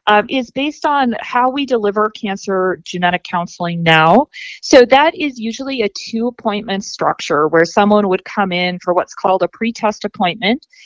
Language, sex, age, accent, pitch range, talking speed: English, female, 40-59, American, 180-230 Hz, 160 wpm